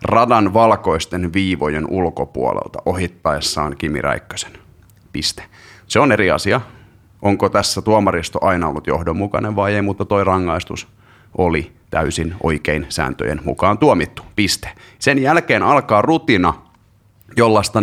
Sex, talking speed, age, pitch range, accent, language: male, 120 wpm, 30-49, 90-110 Hz, native, Finnish